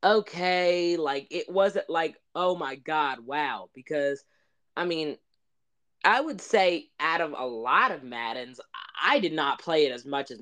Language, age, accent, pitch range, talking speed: English, 20-39, American, 140-185 Hz, 165 wpm